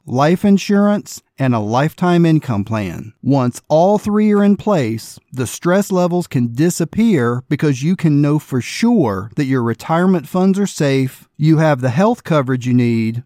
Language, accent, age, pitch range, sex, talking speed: English, American, 40-59, 130-190 Hz, male, 170 wpm